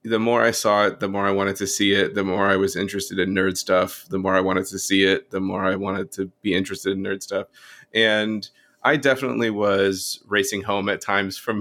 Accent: American